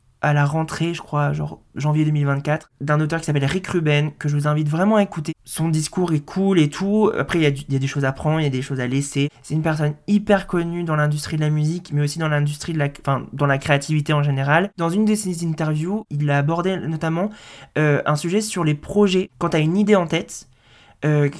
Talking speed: 245 wpm